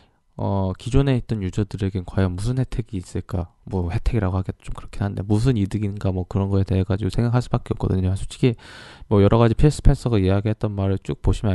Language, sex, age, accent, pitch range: Korean, male, 20-39, native, 90-115 Hz